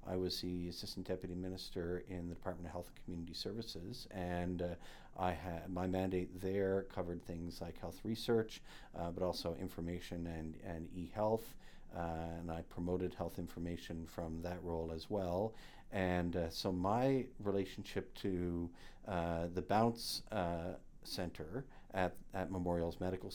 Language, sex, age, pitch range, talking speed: English, male, 50-69, 85-100 Hz, 155 wpm